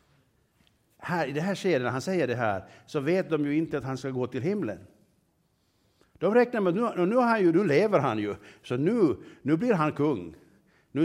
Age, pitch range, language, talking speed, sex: 60-79, 125-170 Hz, Swedish, 225 wpm, male